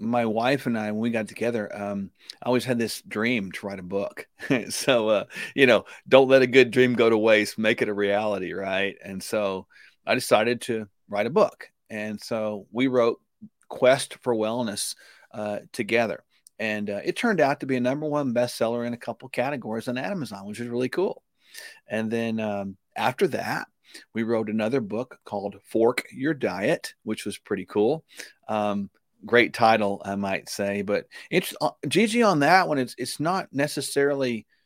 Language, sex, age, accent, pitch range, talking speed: English, male, 40-59, American, 105-125 Hz, 185 wpm